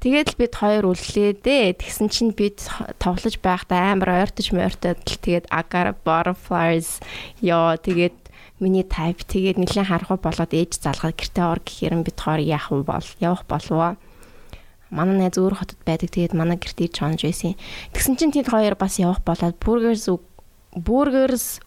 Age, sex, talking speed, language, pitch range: 20-39, female, 160 wpm, English, 175-205 Hz